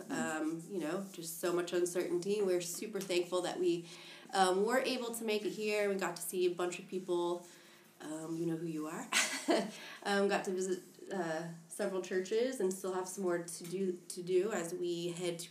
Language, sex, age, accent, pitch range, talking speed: English, female, 20-39, American, 175-205 Hz, 205 wpm